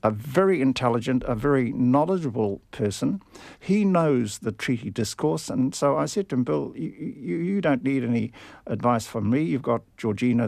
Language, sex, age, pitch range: English, male, 50-69, 110-130 Hz